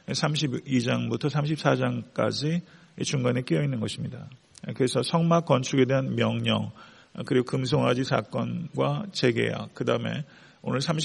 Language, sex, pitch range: Korean, male, 125-160 Hz